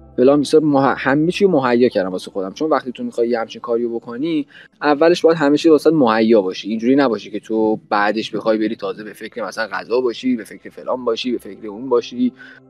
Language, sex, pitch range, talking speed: Persian, male, 120-155 Hz, 210 wpm